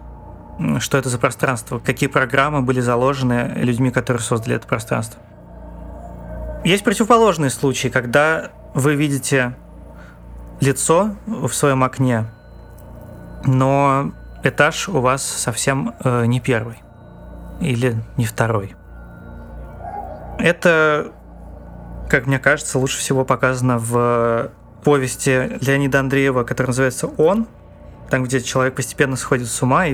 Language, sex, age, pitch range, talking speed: Russian, male, 20-39, 120-140 Hz, 110 wpm